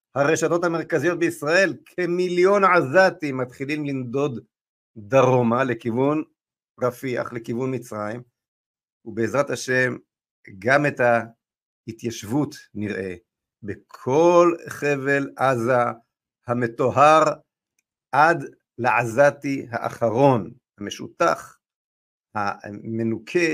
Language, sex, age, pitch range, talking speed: Hebrew, male, 50-69, 120-155 Hz, 70 wpm